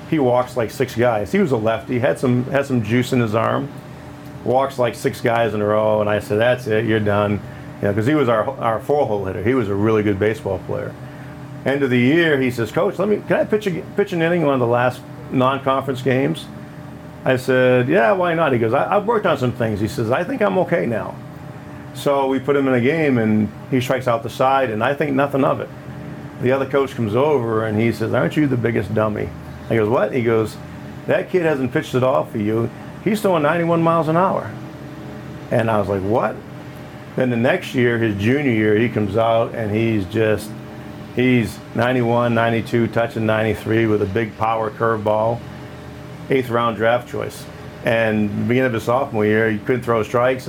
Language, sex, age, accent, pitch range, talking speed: English, male, 40-59, American, 110-145 Hz, 215 wpm